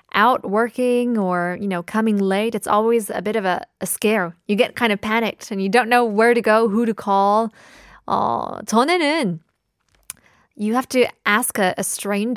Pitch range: 200-275 Hz